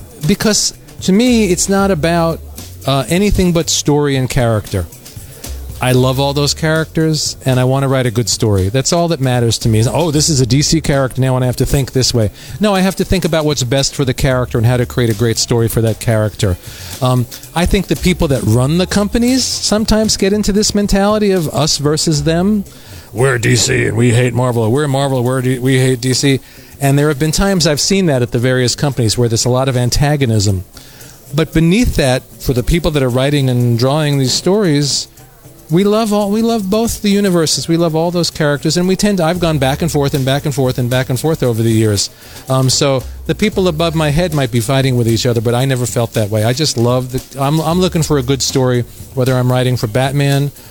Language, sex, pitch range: Italian, male, 125-165 Hz